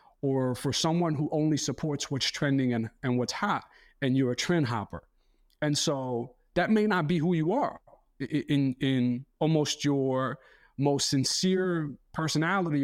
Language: English